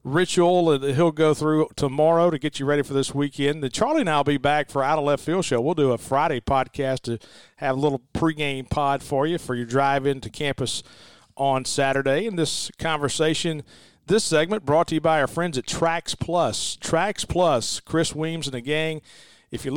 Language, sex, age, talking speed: English, male, 40-59, 205 wpm